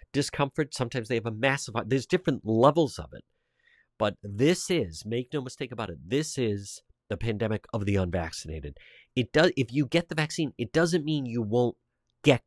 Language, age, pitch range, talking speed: English, 50-69, 100-135 Hz, 190 wpm